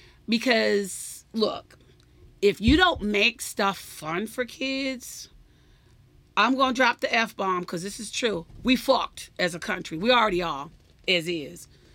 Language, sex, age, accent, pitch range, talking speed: English, female, 40-59, American, 180-245 Hz, 150 wpm